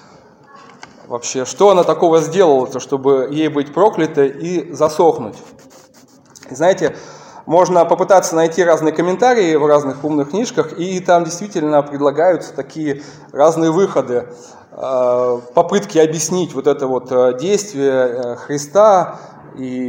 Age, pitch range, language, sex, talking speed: 20-39, 140-180 Hz, Russian, male, 110 wpm